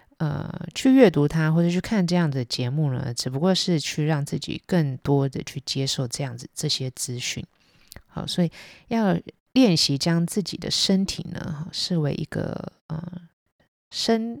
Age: 20-39